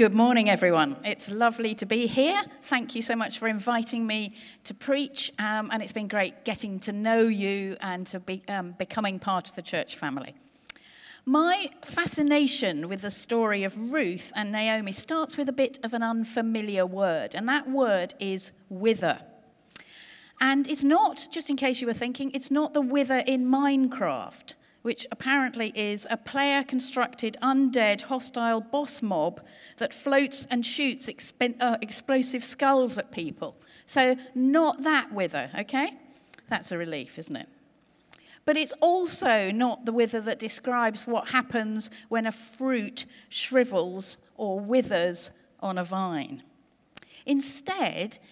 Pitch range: 210-270 Hz